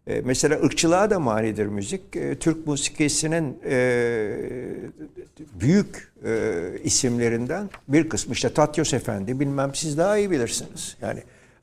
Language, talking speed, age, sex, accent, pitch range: Turkish, 105 wpm, 60-79, male, native, 115-165 Hz